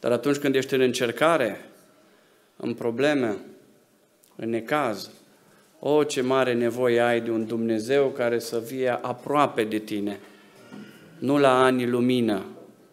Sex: male